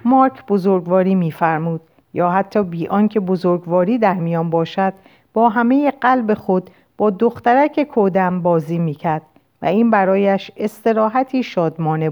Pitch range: 175-235 Hz